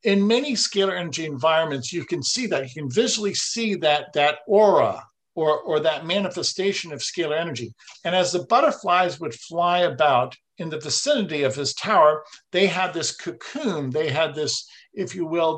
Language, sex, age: English, male, 50-69